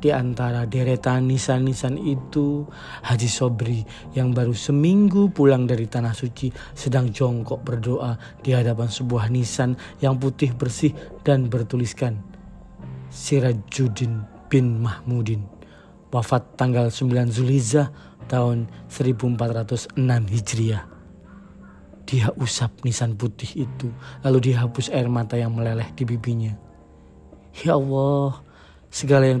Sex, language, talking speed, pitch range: male, Indonesian, 110 wpm, 115-130 Hz